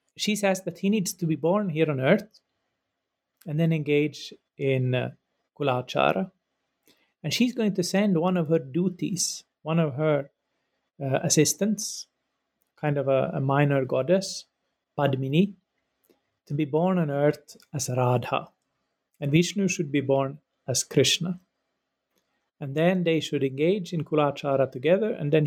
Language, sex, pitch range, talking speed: English, male, 135-175 Hz, 145 wpm